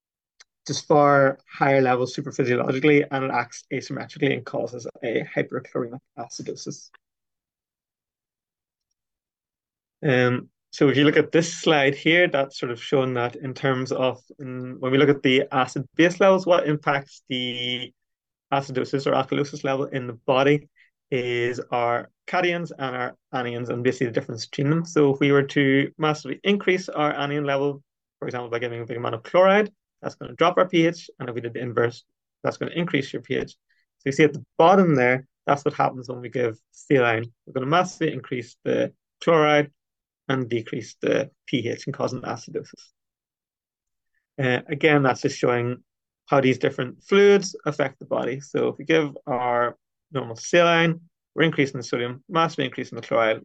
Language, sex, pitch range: English, male, 125-150 Hz